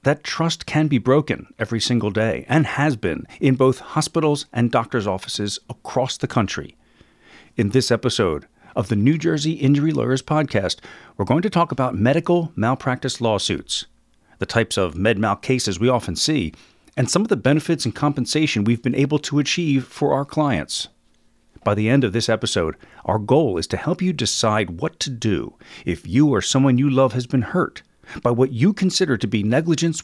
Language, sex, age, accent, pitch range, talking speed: English, male, 40-59, American, 110-150 Hz, 190 wpm